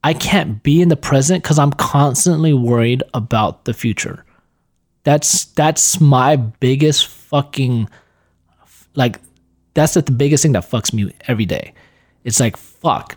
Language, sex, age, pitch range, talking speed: English, male, 20-39, 115-150 Hz, 140 wpm